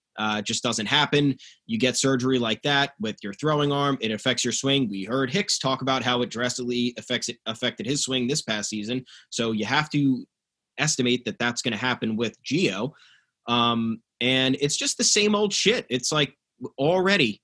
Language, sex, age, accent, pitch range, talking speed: English, male, 20-39, American, 120-155 Hz, 195 wpm